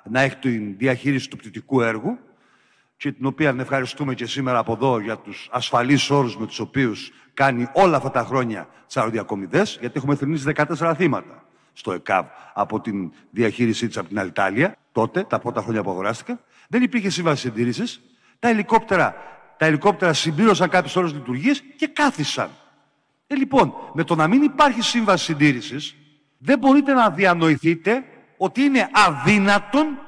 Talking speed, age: 150 wpm, 50-69